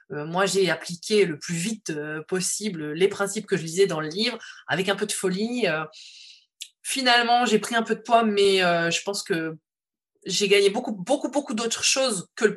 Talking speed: 190 wpm